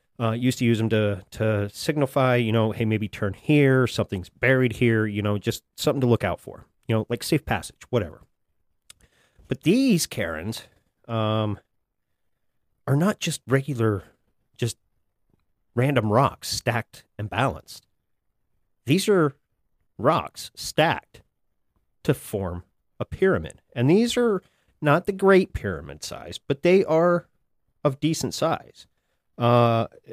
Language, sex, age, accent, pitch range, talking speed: English, male, 30-49, American, 105-135 Hz, 135 wpm